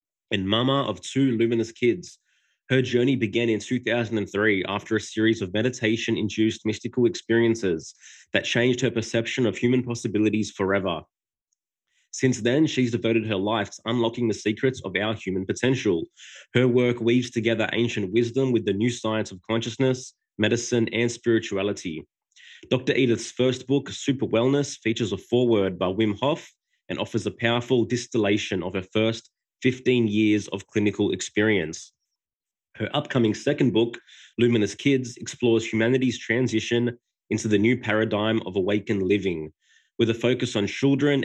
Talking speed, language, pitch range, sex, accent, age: 145 wpm, English, 105-125 Hz, male, Australian, 20-39